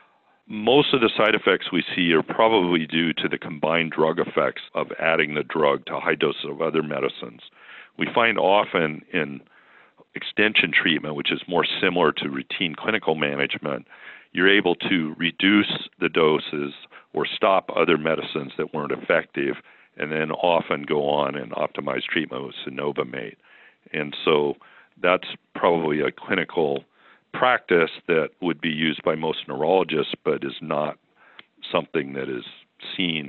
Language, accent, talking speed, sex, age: English, American, 150 wpm, male, 50-69